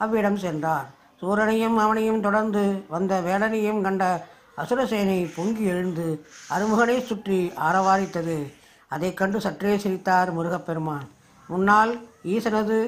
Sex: female